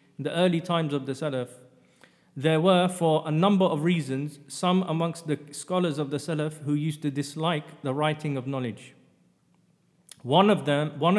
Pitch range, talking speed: 140-165 Hz, 170 wpm